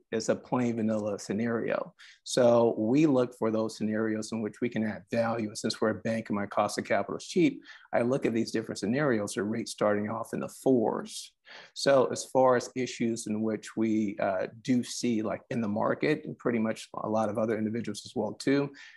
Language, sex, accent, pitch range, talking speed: English, male, American, 110-120 Hz, 215 wpm